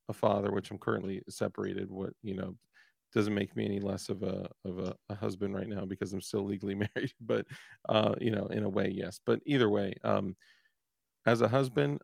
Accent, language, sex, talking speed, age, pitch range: American, English, male, 210 wpm, 40-59, 100-120 Hz